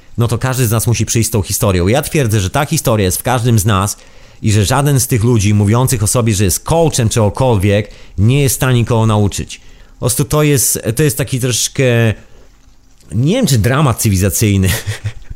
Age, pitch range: 30-49, 105-140 Hz